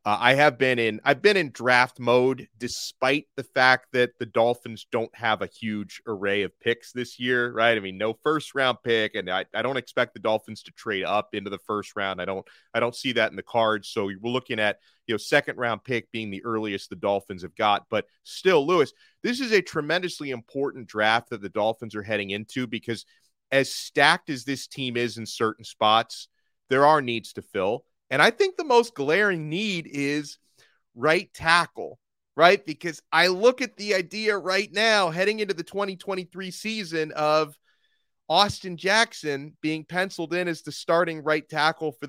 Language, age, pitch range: English, 30-49, 115-165 Hz